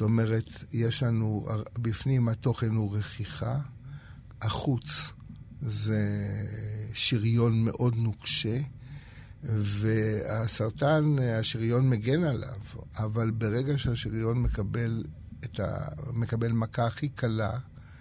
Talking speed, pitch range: 90 wpm, 110-125 Hz